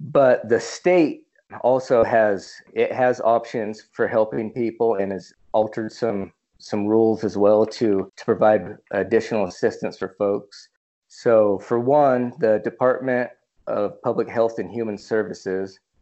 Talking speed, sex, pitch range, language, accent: 140 wpm, male, 105-125 Hz, English, American